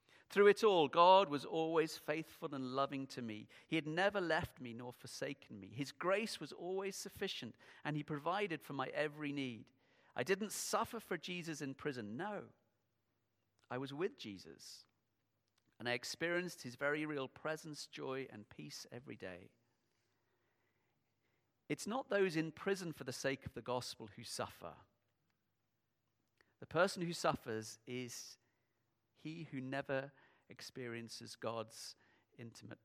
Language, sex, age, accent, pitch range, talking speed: English, male, 40-59, British, 110-145 Hz, 145 wpm